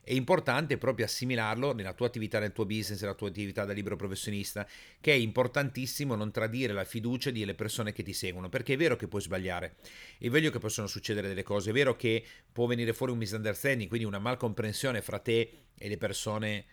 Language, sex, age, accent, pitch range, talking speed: Italian, male, 40-59, native, 100-120 Hz, 205 wpm